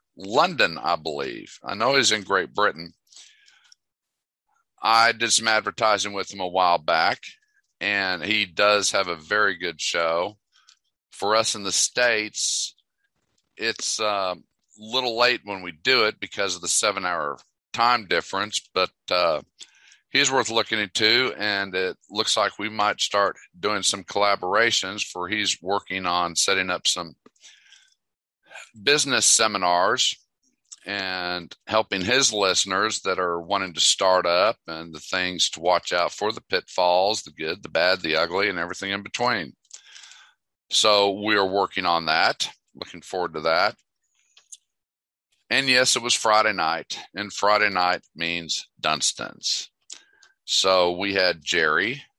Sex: male